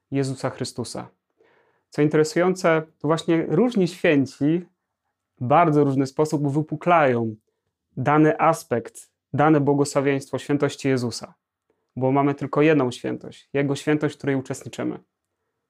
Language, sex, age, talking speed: Polish, male, 30-49, 110 wpm